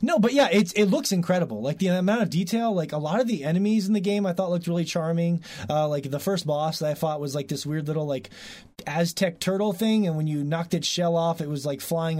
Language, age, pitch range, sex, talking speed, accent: English, 20-39, 135-200 Hz, male, 265 wpm, American